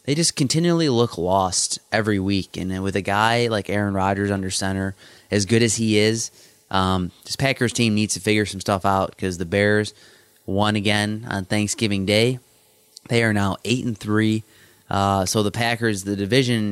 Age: 20-39